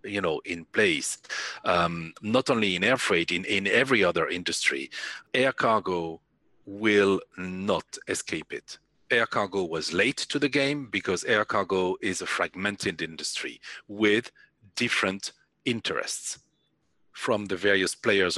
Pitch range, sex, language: 95-135 Hz, male, English